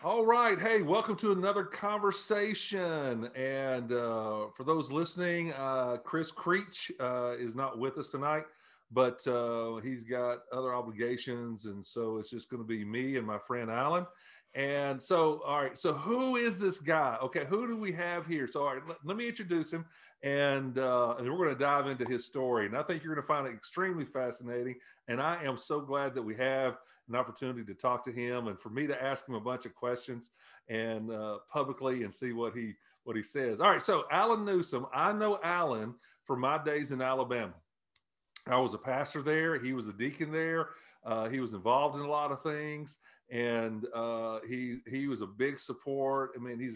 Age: 40-59